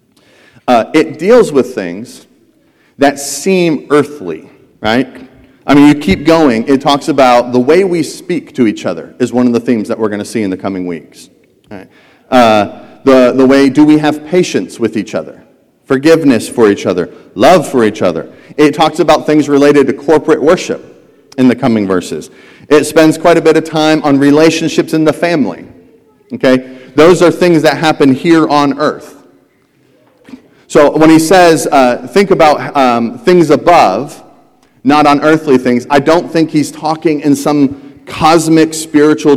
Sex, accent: male, American